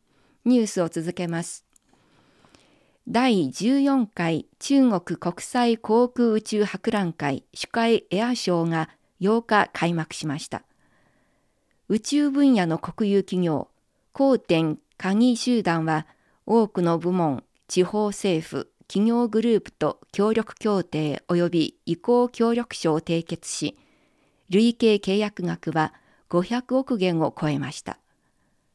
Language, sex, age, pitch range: Japanese, female, 50-69, 165-225 Hz